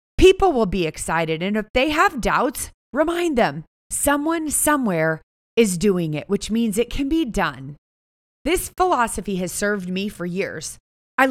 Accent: American